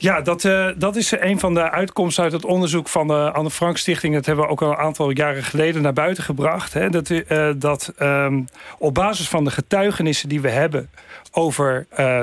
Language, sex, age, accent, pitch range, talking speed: Dutch, male, 40-59, Dutch, 140-165 Hz, 190 wpm